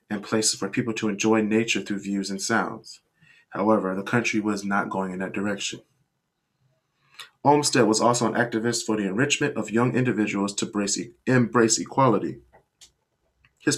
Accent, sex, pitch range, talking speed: American, male, 105-130 Hz, 155 wpm